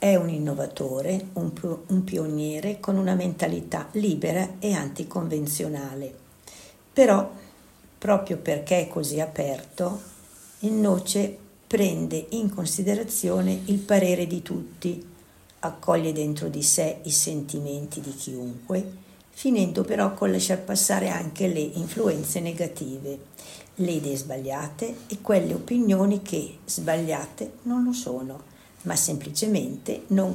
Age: 60-79